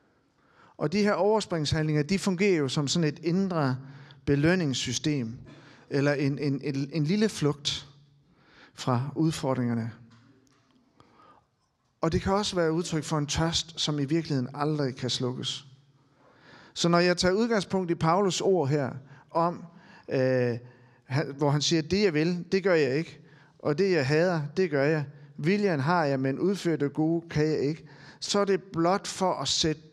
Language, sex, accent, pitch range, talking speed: Danish, male, native, 145-185 Hz, 165 wpm